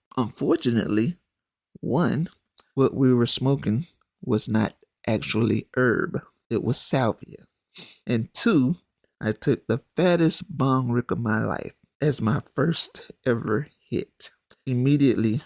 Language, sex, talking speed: English, male, 115 wpm